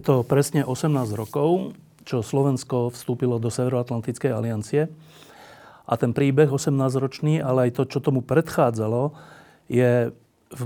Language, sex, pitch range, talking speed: Slovak, male, 120-140 Hz, 130 wpm